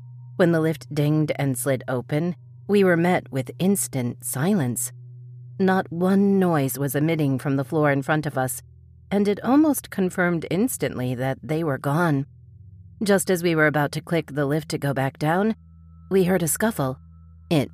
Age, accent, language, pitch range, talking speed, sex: 40-59, American, English, 130-170 Hz, 175 wpm, female